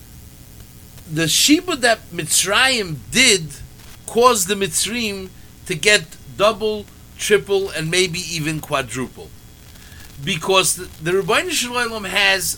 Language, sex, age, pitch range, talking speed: English, male, 50-69, 155-220 Hz, 105 wpm